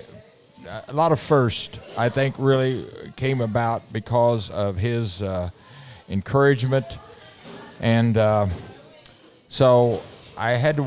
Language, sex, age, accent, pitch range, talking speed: English, male, 50-69, American, 110-135 Hz, 110 wpm